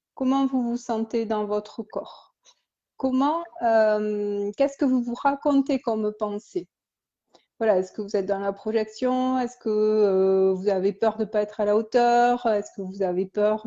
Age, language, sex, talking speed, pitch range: 30-49, French, female, 185 wpm, 215-265 Hz